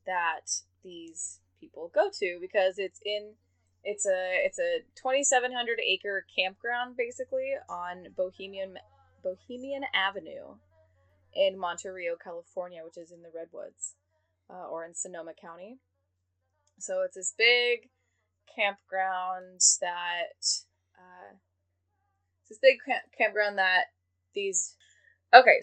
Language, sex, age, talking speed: English, female, 10-29, 115 wpm